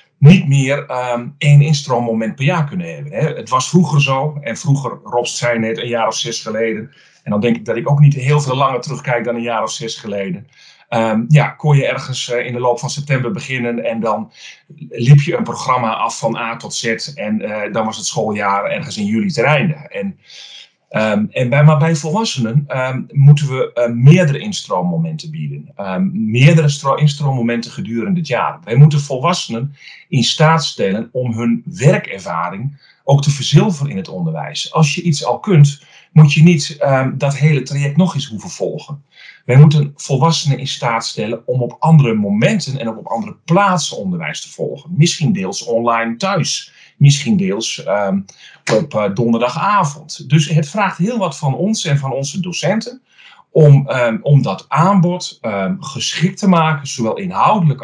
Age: 40-59